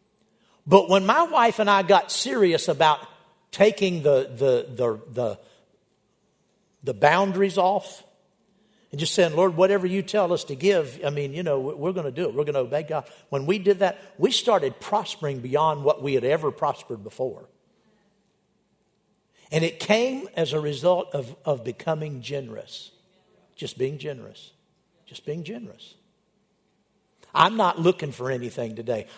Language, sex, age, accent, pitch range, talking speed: English, male, 60-79, American, 160-210 Hz, 160 wpm